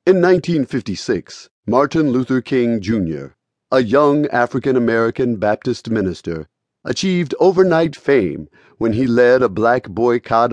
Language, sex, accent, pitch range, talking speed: English, male, American, 100-135 Hz, 115 wpm